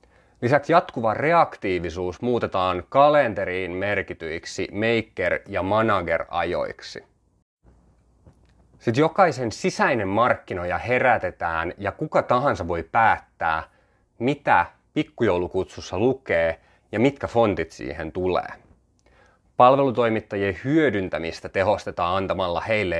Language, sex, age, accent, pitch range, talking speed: Finnish, male, 30-49, native, 85-120 Hz, 85 wpm